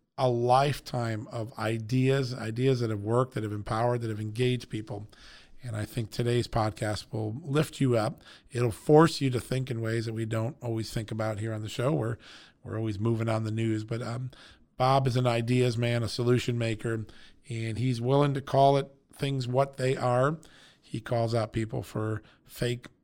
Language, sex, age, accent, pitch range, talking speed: English, male, 40-59, American, 110-130 Hz, 195 wpm